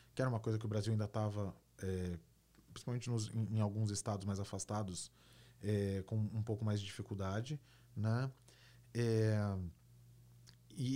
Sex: male